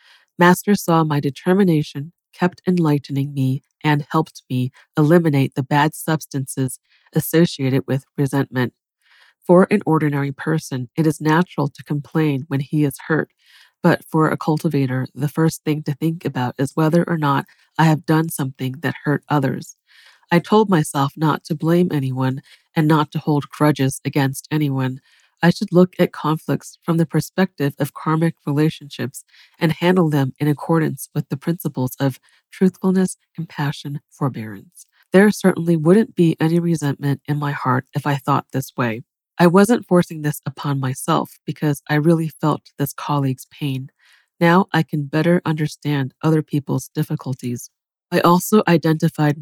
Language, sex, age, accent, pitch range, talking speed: English, female, 40-59, American, 140-165 Hz, 155 wpm